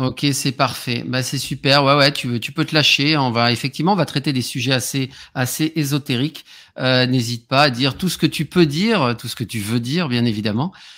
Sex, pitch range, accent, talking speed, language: male, 130-160 Hz, French, 240 wpm, French